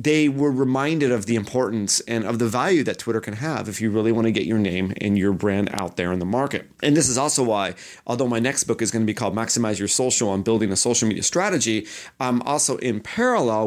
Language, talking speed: English, 250 wpm